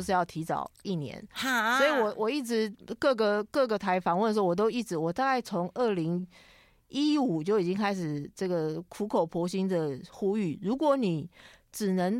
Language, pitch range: Chinese, 175-230 Hz